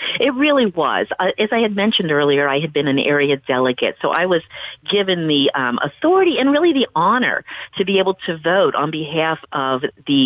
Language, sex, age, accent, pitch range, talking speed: English, female, 50-69, American, 145-225 Hz, 200 wpm